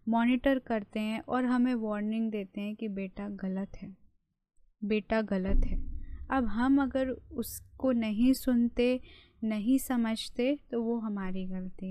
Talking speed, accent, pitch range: 135 wpm, native, 210-250 Hz